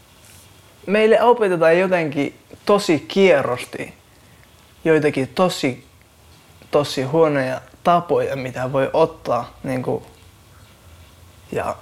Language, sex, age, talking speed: Finnish, male, 20-39, 75 wpm